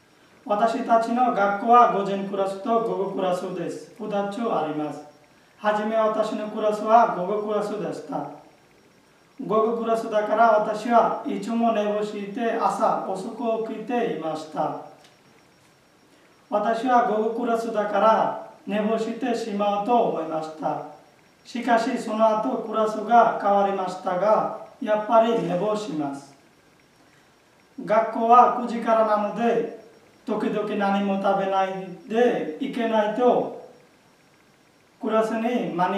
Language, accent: Japanese, Indian